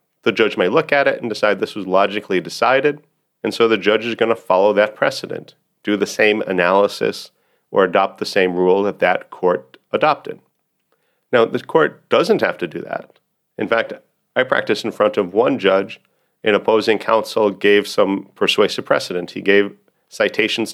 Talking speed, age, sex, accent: 180 wpm, 40-59, male, American